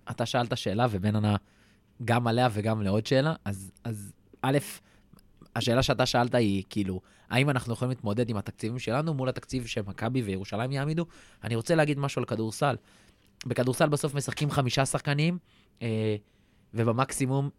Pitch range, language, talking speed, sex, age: 105-135 Hz, Hebrew, 145 wpm, male, 20-39